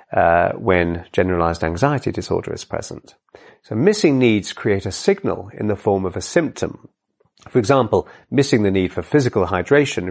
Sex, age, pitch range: male, 40-59, 90-120 Hz